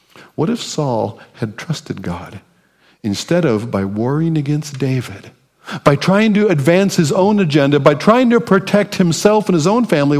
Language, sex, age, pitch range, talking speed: English, male, 50-69, 100-150 Hz, 165 wpm